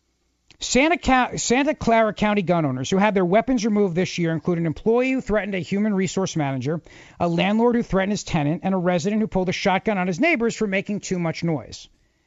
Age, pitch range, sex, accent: 50-69, 165-220 Hz, male, American